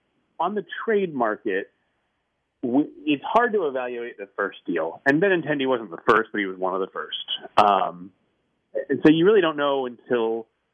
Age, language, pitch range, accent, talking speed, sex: 30-49, English, 120-170 Hz, American, 180 wpm, male